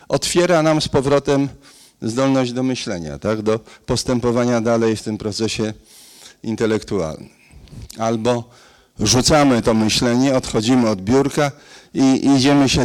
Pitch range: 110-135 Hz